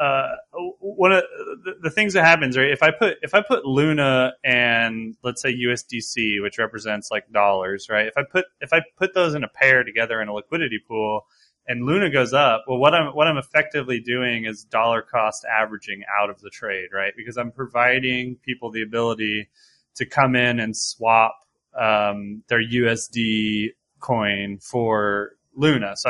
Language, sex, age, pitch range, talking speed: English, male, 20-39, 110-135 Hz, 175 wpm